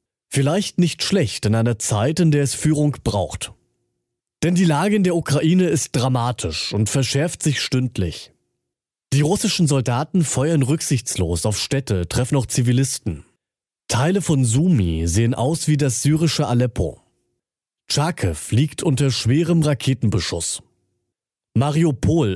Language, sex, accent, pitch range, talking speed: German, male, German, 110-155 Hz, 130 wpm